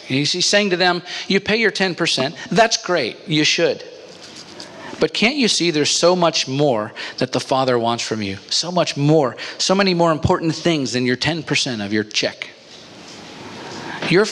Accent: American